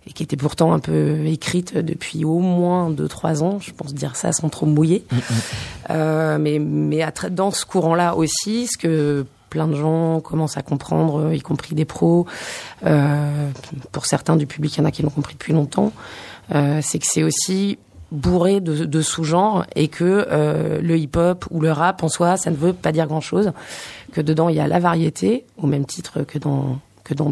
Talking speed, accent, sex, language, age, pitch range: 205 wpm, French, female, French, 30-49, 150-175 Hz